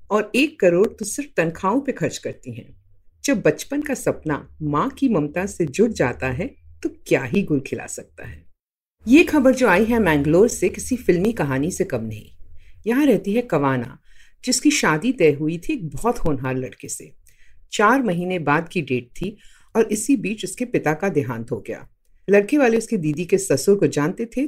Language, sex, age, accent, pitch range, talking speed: Hindi, female, 50-69, native, 145-215 Hz, 190 wpm